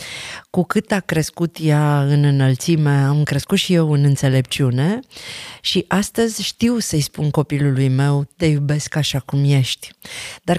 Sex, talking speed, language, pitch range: female, 145 wpm, Romanian, 145-175 Hz